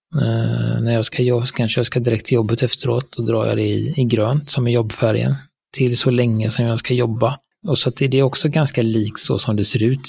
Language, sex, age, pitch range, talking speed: Swedish, male, 30-49, 105-125 Hz, 255 wpm